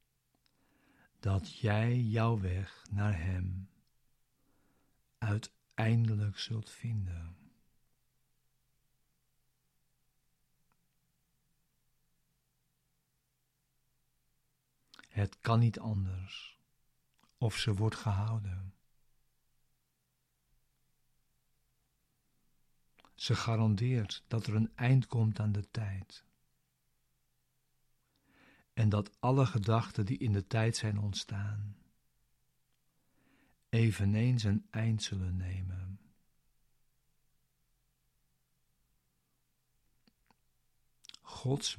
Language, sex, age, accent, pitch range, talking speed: Dutch, male, 50-69, Dutch, 95-115 Hz, 60 wpm